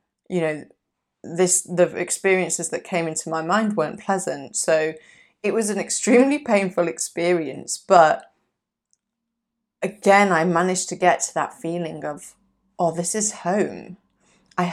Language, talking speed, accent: English, 140 wpm, British